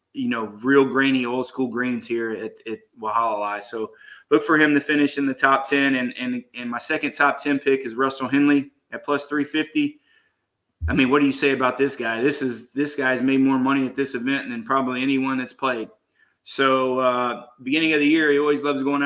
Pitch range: 130-150 Hz